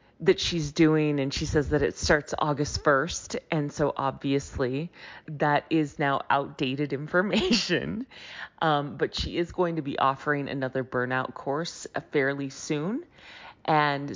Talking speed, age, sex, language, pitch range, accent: 140 wpm, 30-49, female, English, 140-175 Hz, American